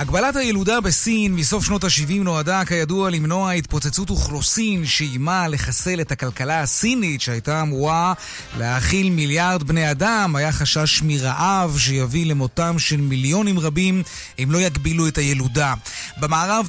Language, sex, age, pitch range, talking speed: Hebrew, male, 30-49, 145-185 Hz, 130 wpm